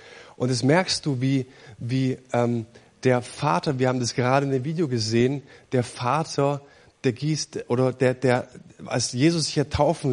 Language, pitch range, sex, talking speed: German, 125-160 Hz, male, 165 wpm